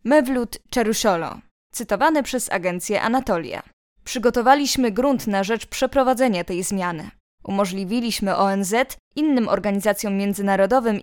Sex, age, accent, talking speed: female, 20-39, native, 100 wpm